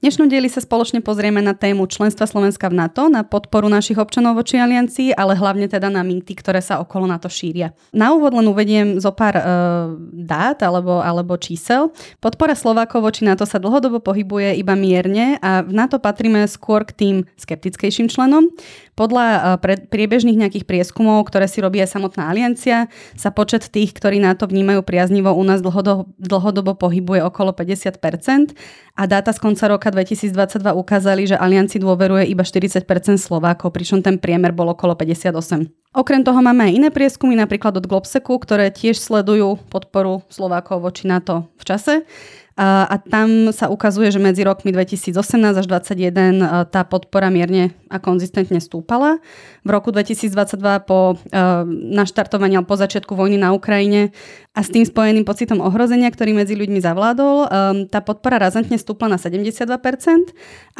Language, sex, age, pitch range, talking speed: Slovak, female, 20-39, 185-220 Hz, 160 wpm